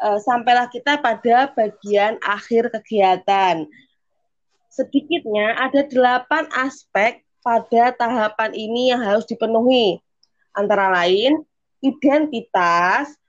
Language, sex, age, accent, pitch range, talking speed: Indonesian, female, 20-39, native, 215-280 Hz, 85 wpm